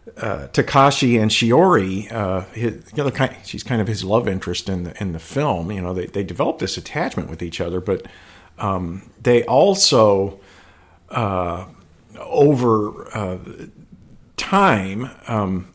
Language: English